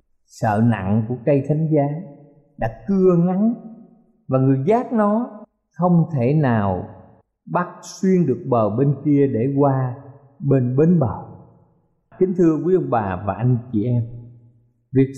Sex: male